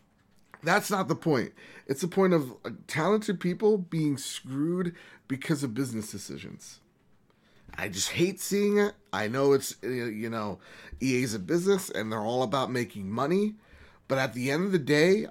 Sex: male